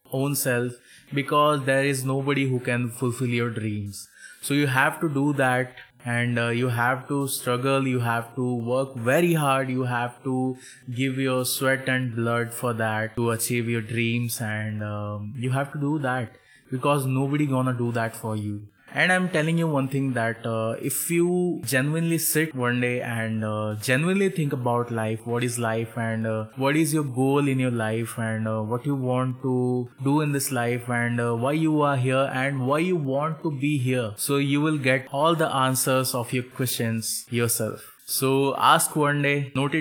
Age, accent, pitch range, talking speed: 20-39, native, 120-140 Hz, 195 wpm